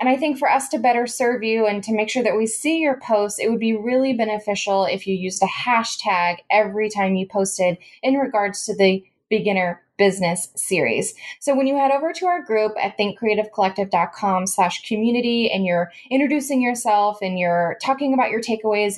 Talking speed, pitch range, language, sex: 190 wpm, 195-250 Hz, English, female